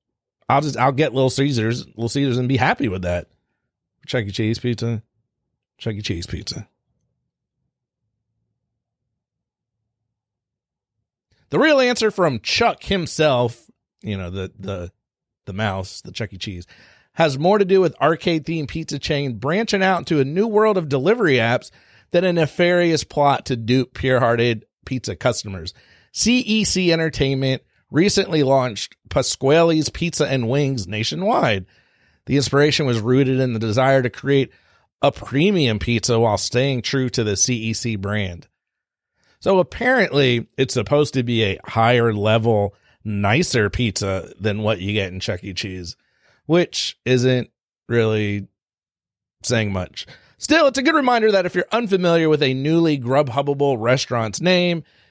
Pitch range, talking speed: 110-155 Hz, 140 wpm